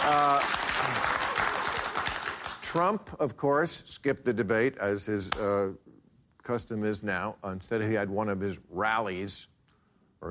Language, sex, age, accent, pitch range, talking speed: English, male, 50-69, American, 110-160 Hz, 120 wpm